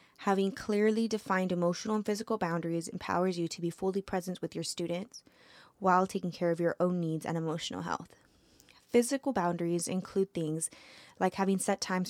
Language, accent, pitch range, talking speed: English, American, 170-200 Hz, 170 wpm